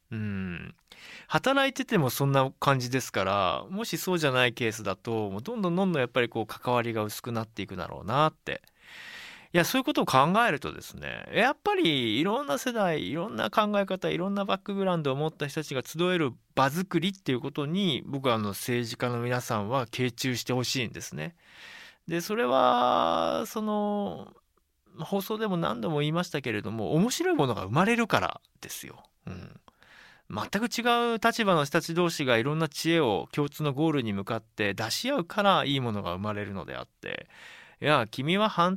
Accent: native